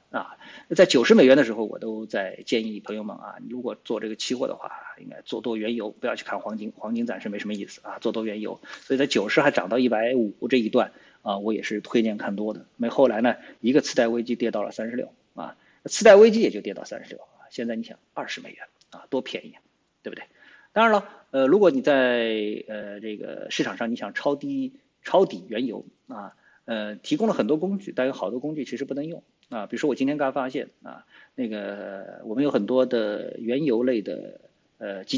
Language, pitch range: Chinese, 110-150 Hz